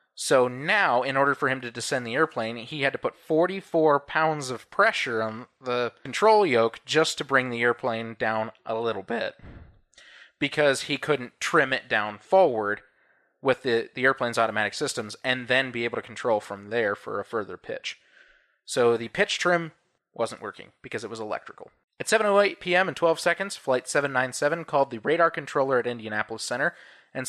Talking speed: 180 wpm